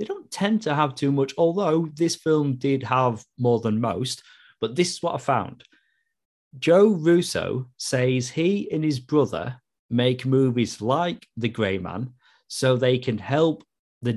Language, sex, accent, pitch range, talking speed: English, male, British, 110-135 Hz, 165 wpm